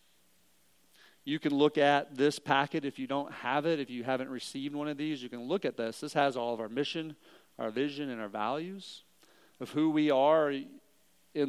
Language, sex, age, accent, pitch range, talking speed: English, male, 40-59, American, 115-145 Hz, 205 wpm